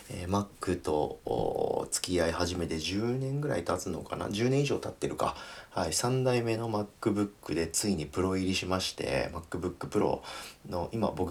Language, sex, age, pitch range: Japanese, male, 40-59, 80-110 Hz